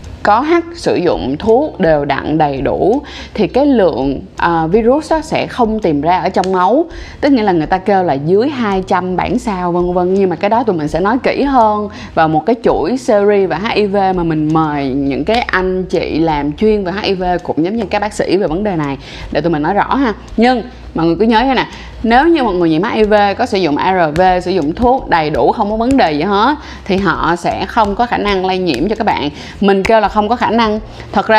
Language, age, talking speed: Vietnamese, 20-39, 245 wpm